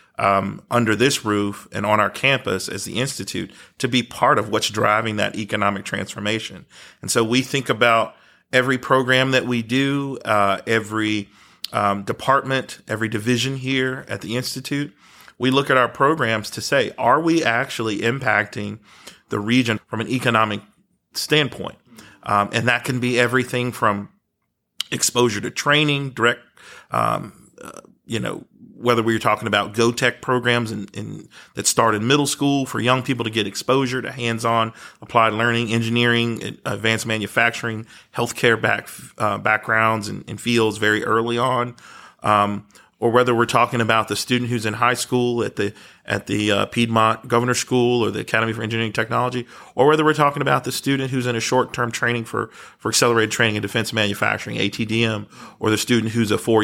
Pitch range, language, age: 105-125 Hz, English, 40-59